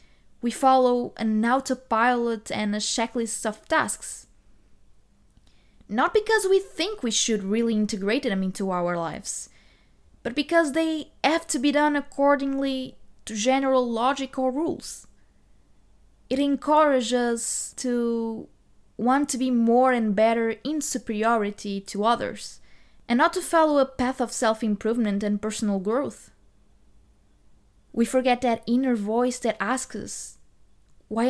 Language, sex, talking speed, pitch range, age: English, female, 130 wpm, 210-260 Hz, 20-39